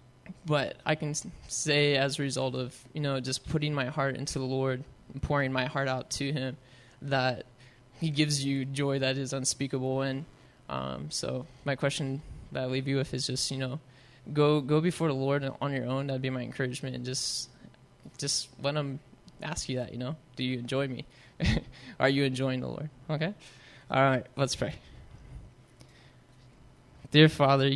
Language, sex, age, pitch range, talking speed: English, male, 20-39, 130-145 Hz, 185 wpm